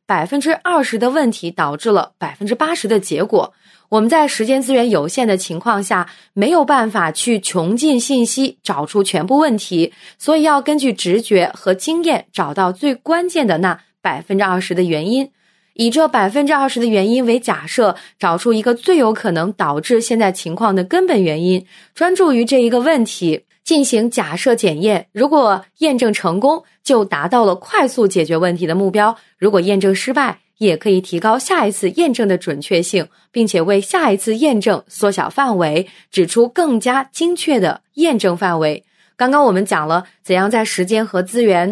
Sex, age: female, 20-39